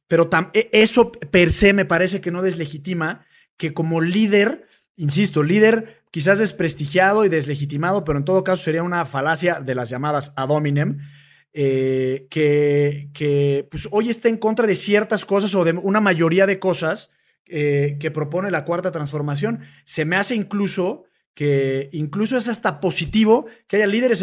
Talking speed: 155 wpm